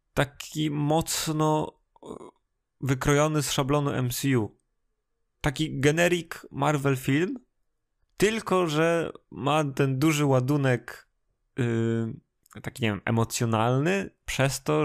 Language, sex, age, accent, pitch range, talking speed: Polish, male, 20-39, native, 120-145 Hz, 95 wpm